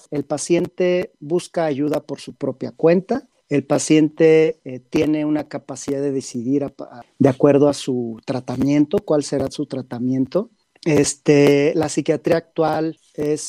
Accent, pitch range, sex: Mexican, 140-175 Hz, male